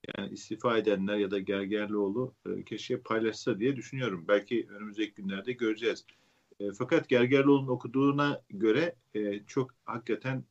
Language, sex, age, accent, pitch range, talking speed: Turkish, male, 50-69, native, 95-125 Hz, 125 wpm